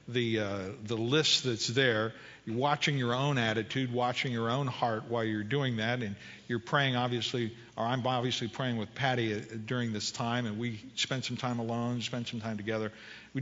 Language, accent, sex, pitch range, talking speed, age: English, American, male, 110-140 Hz, 195 wpm, 50-69